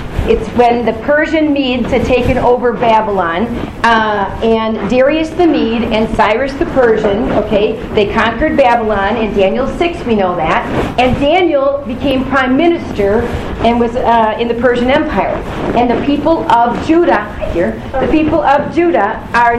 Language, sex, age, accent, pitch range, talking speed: English, female, 40-59, American, 220-270 Hz, 155 wpm